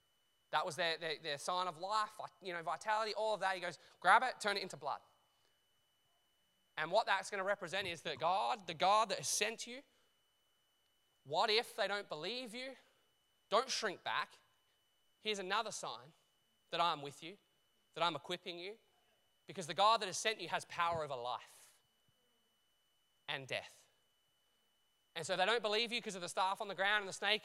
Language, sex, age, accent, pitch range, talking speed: English, male, 20-39, Australian, 165-210 Hz, 190 wpm